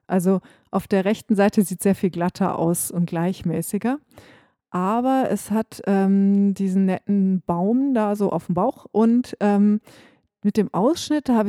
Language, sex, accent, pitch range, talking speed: English, female, German, 185-225 Hz, 160 wpm